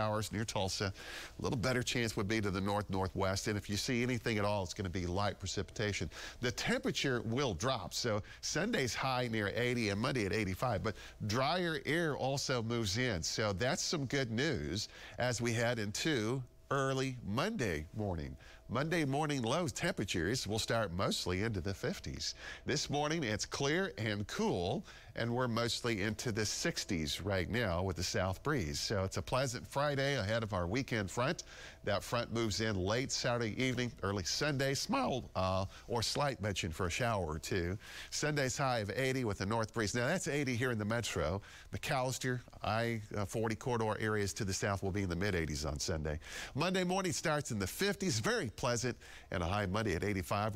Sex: male